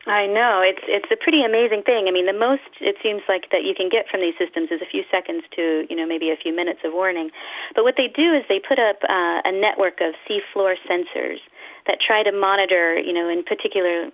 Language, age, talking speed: English, 40-59, 240 wpm